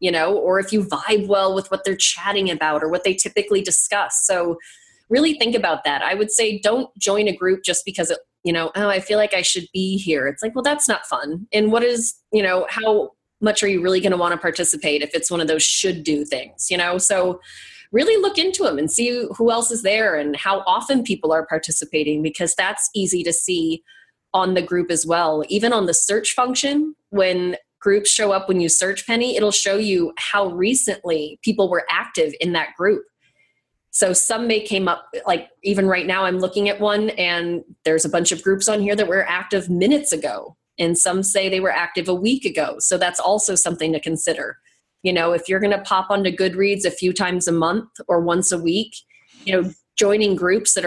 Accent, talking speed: American, 220 wpm